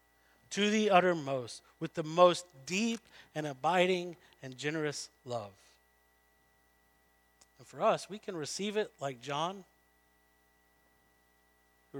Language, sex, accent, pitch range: English, male, American, 100-165 Hz